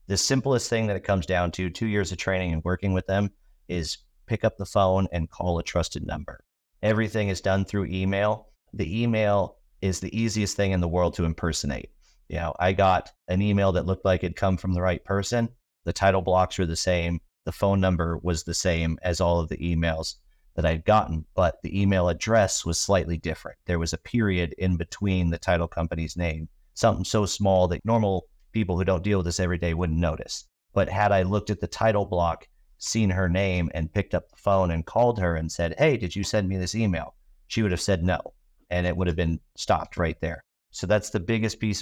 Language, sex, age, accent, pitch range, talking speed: English, male, 40-59, American, 85-100 Hz, 220 wpm